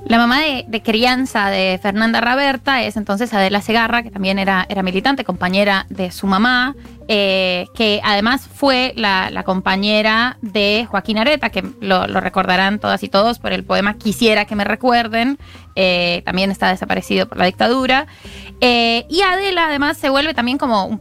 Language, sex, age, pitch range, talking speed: Spanish, female, 20-39, 195-235 Hz, 175 wpm